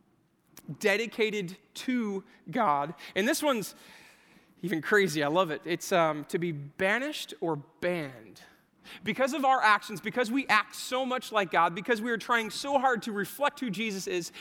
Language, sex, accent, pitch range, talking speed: English, male, American, 160-220 Hz, 165 wpm